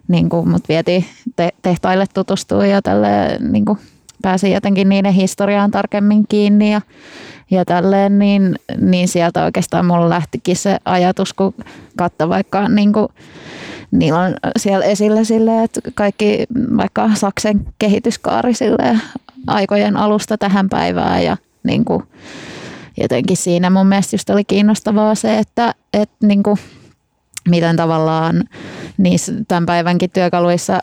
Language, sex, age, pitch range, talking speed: Finnish, female, 20-39, 180-215 Hz, 115 wpm